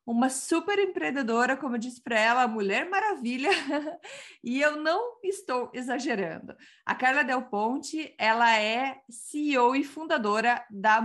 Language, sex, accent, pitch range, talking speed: Portuguese, female, Brazilian, 220-275 Hz, 135 wpm